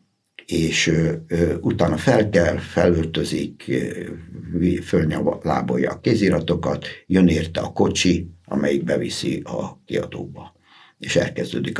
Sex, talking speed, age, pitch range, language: male, 105 wpm, 60-79, 80-95 Hz, Hungarian